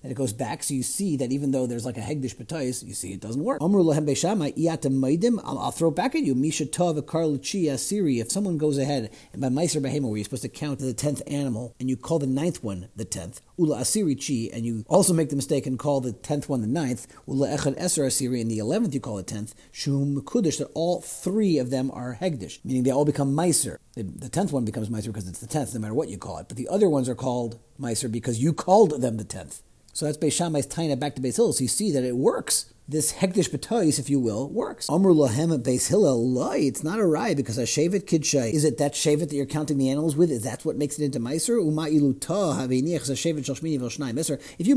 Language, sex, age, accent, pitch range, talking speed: English, male, 40-59, American, 130-165 Hz, 240 wpm